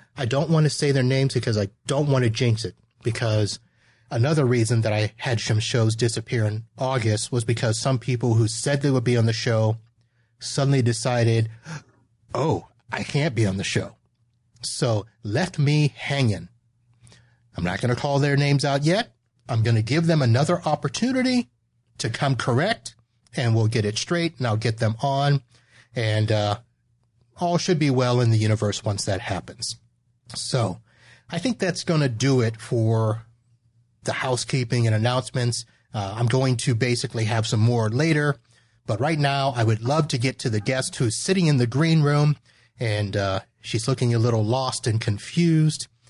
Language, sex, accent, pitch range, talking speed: English, male, American, 115-140 Hz, 180 wpm